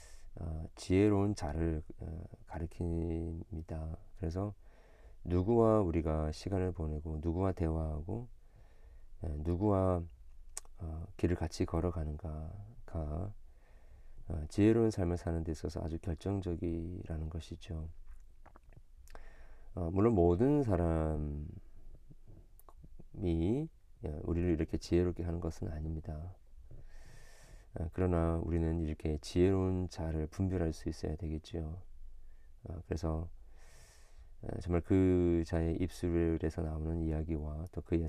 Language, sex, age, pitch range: Korean, male, 40-59, 80-95 Hz